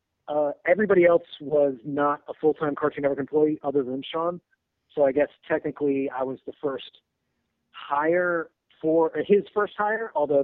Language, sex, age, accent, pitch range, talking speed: English, male, 40-59, American, 130-150 Hz, 160 wpm